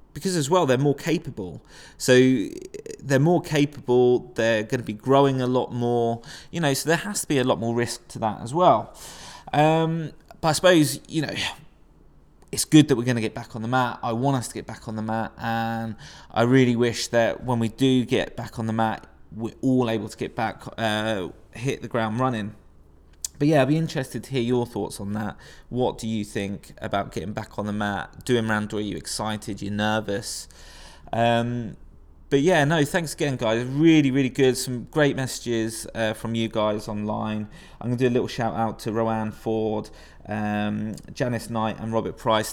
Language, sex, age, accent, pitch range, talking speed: English, male, 20-39, British, 105-130 Hz, 205 wpm